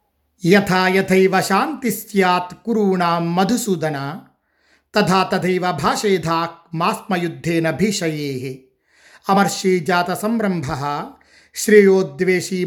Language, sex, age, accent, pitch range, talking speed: Telugu, male, 50-69, native, 140-185 Hz, 55 wpm